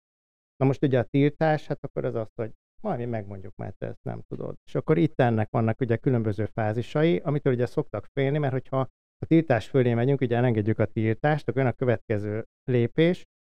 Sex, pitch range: male, 110-135 Hz